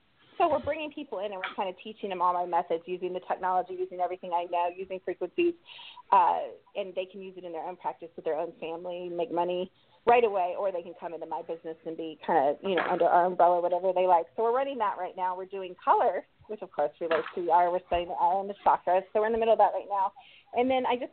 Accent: American